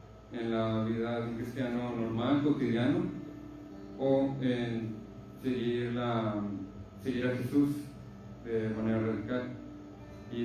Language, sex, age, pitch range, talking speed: Spanish, male, 30-49, 110-130 Hz, 105 wpm